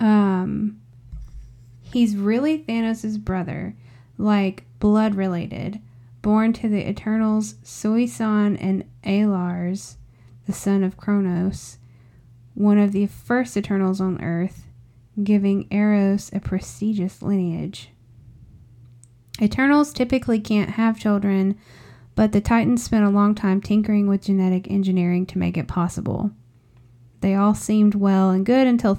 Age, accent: 10-29, American